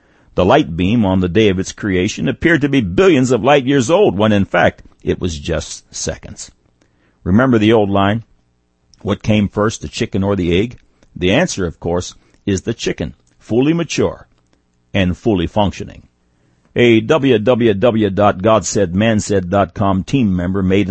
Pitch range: 90-120 Hz